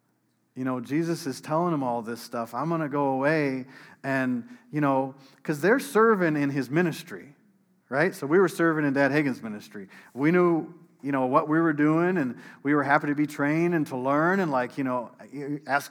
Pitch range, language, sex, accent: 135-185 Hz, English, male, American